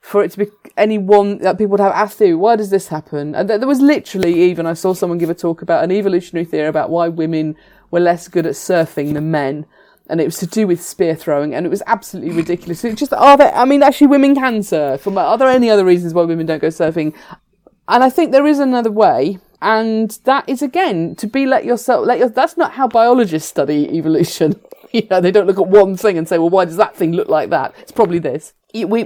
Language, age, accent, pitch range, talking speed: English, 30-49, British, 160-215 Hz, 250 wpm